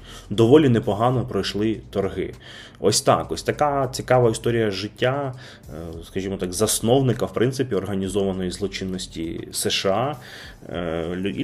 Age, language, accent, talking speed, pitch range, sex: 30-49, Ukrainian, native, 105 wpm, 100-130 Hz, male